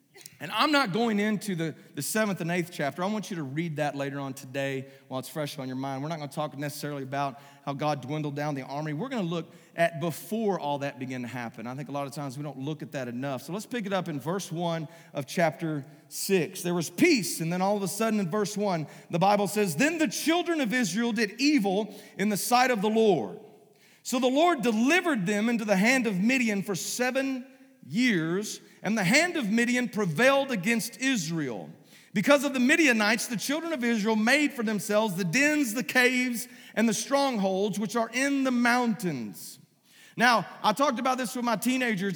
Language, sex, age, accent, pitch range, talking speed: English, male, 40-59, American, 170-255 Hz, 215 wpm